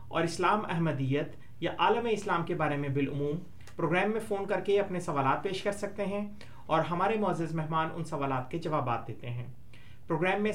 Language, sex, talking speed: Urdu, male, 190 wpm